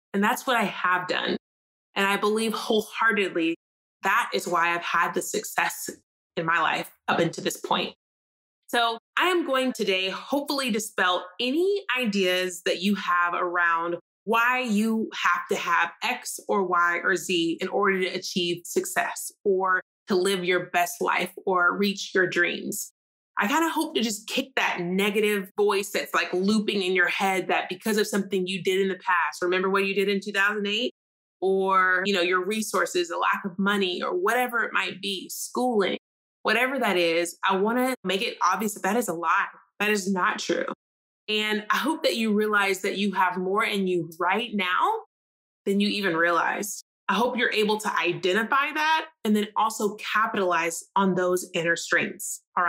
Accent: American